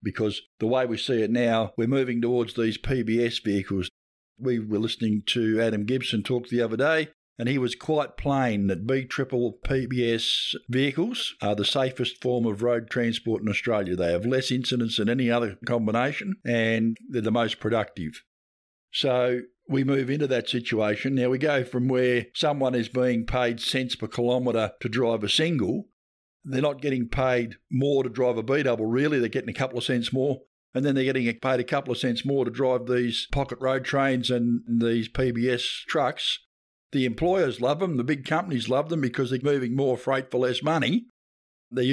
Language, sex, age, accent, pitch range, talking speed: English, male, 50-69, Australian, 115-135 Hz, 190 wpm